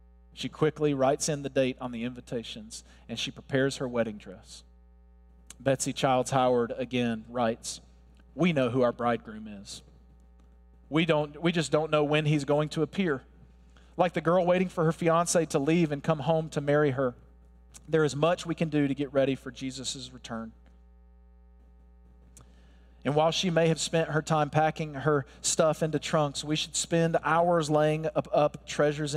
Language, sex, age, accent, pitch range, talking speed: English, male, 40-59, American, 110-155 Hz, 175 wpm